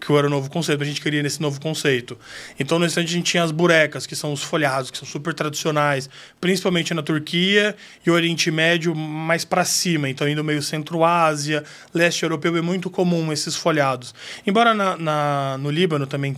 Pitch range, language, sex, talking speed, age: 145-170 Hz, Portuguese, male, 195 wpm, 20-39